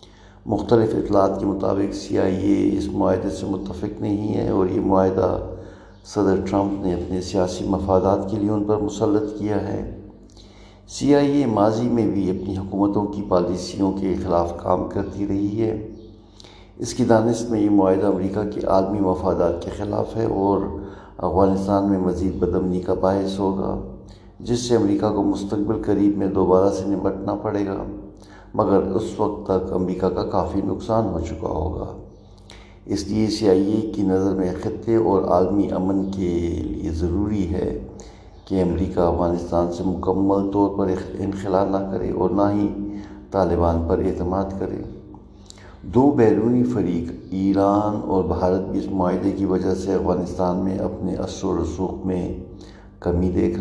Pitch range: 95-100 Hz